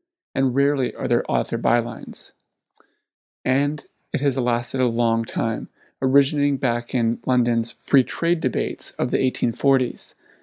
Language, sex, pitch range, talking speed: English, male, 125-145 Hz, 130 wpm